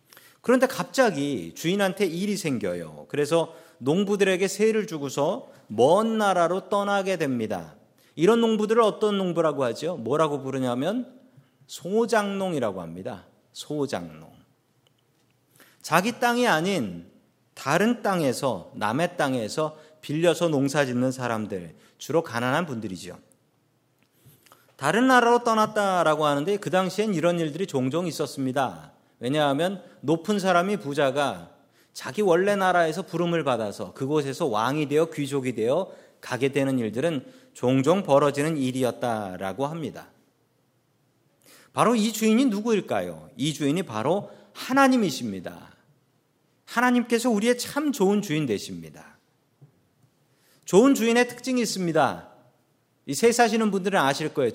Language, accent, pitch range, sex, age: Korean, native, 135-210 Hz, male, 40-59